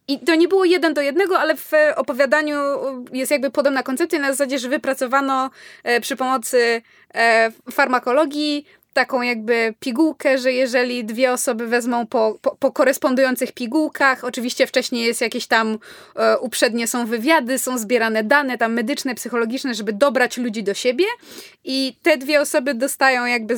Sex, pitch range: female, 235-285 Hz